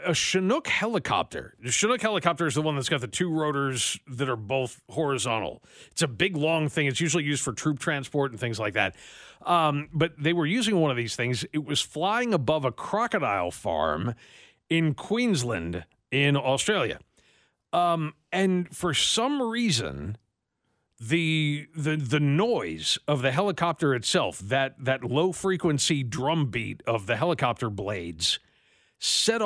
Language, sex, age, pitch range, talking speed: English, male, 40-59, 130-180 Hz, 155 wpm